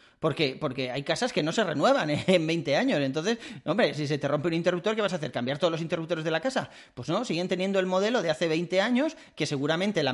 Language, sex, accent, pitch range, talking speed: Spanish, male, Spanish, 135-175 Hz, 260 wpm